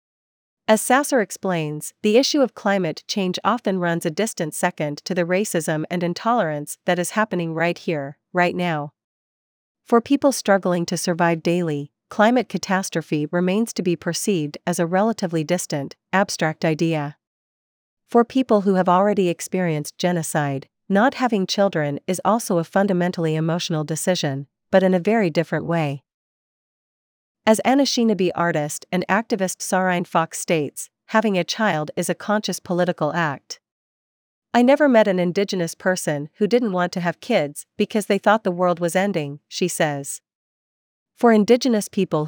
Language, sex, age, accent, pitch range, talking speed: English, female, 40-59, American, 165-205 Hz, 150 wpm